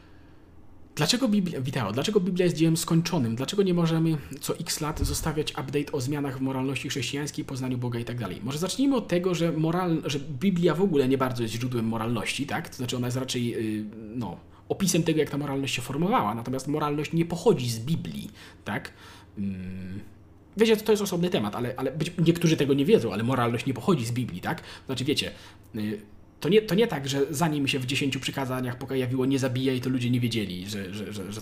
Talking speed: 195 wpm